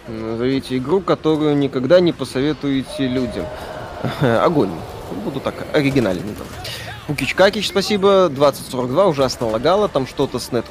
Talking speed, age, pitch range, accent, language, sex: 120 wpm, 20-39, 115-150 Hz, native, Russian, male